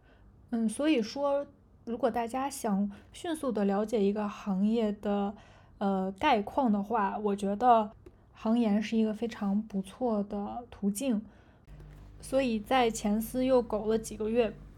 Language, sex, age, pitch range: Chinese, female, 20-39, 205-250 Hz